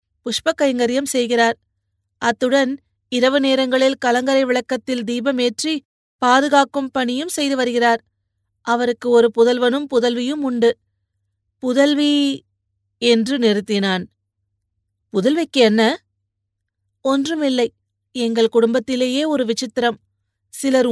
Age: 30-49